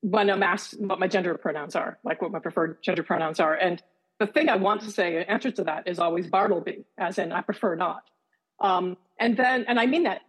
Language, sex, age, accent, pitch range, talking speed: English, female, 50-69, American, 175-220 Hz, 240 wpm